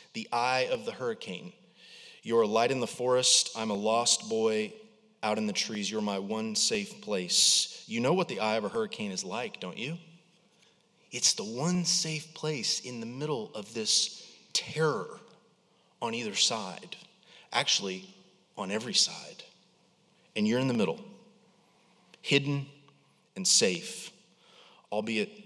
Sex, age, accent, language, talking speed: male, 30-49, American, English, 150 wpm